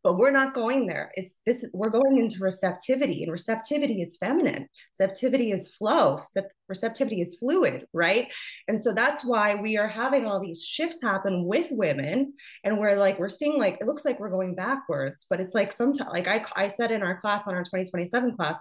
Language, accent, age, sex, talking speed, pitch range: English, American, 20-39, female, 200 wpm, 180-245 Hz